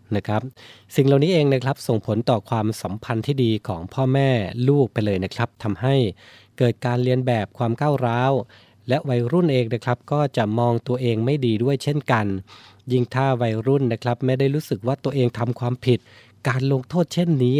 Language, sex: Thai, male